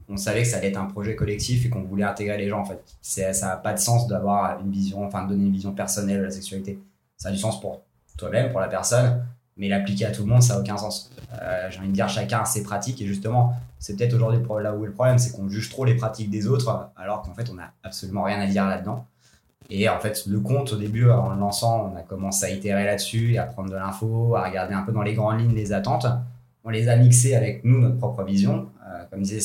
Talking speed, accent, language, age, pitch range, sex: 265 wpm, French, French, 20-39, 95-115 Hz, male